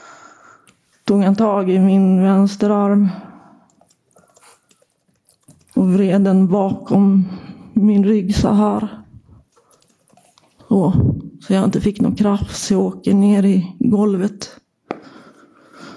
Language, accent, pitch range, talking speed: Swedish, native, 185-210 Hz, 100 wpm